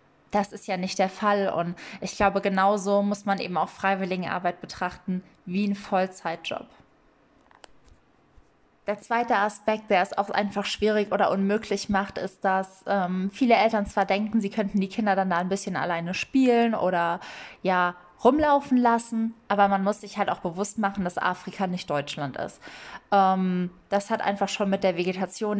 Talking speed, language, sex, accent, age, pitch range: 170 wpm, German, female, German, 20-39, 190-220 Hz